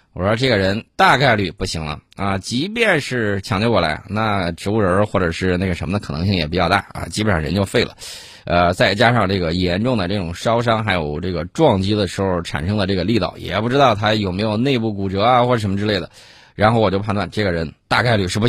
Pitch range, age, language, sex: 90-115 Hz, 20-39, Chinese, male